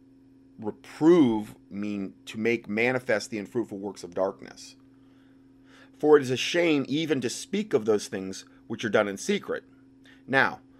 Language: English